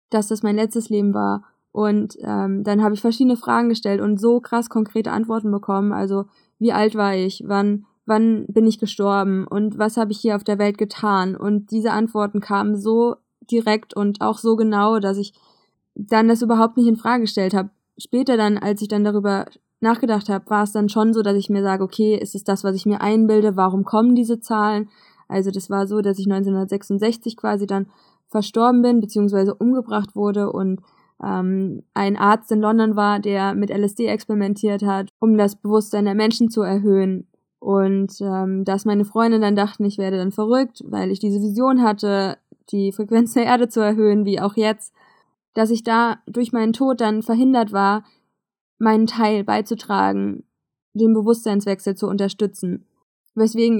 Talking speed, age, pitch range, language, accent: 180 wpm, 20-39, 200-225 Hz, German, German